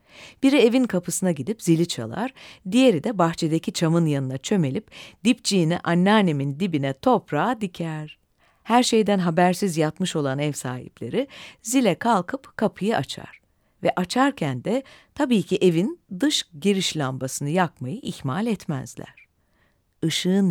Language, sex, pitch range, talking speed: Turkish, female, 155-225 Hz, 120 wpm